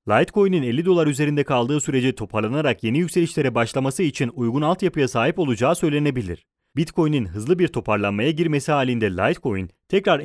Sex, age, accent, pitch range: male, 30-49, Turkish, 115-165 Hz